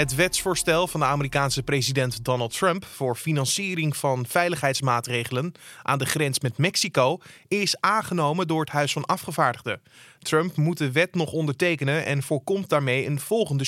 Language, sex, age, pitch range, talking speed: Dutch, male, 20-39, 135-170 Hz, 155 wpm